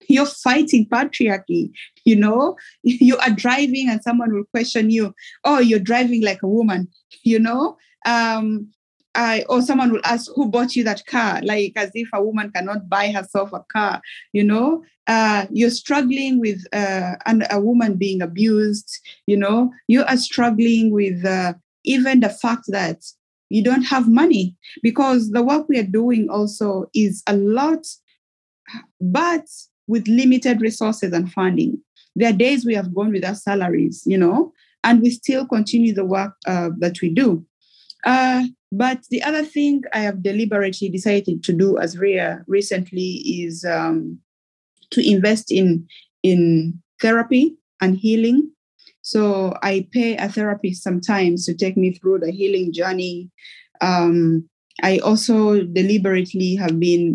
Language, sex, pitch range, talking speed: English, female, 190-240 Hz, 155 wpm